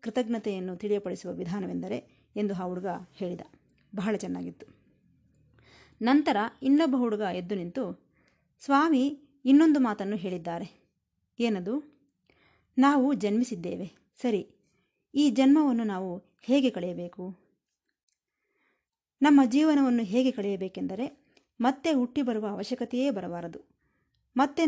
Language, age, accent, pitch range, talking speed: Kannada, 30-49, native, 195-270 Hz, 90 wpm